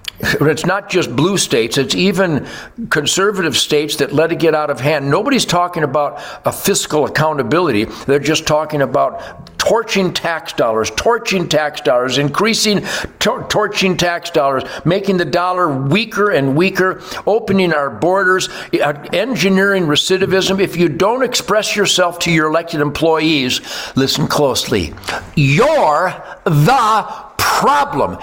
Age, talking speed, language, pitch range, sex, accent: 60-79, 130 wpm, English, 150-205 Hz, male, American